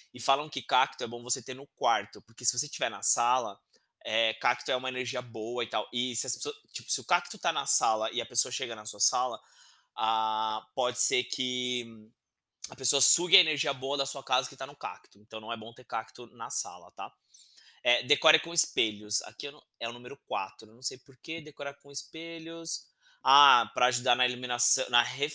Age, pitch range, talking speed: 20-39, 115-150 Hz, 205 wpm